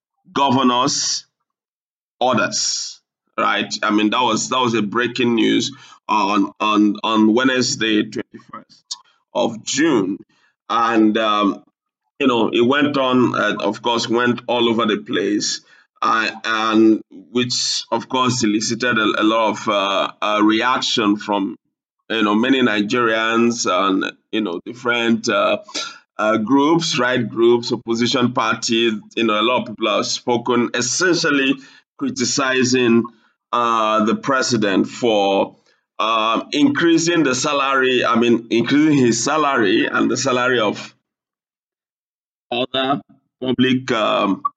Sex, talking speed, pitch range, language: male, 125 wpm, 115-135 Hz, English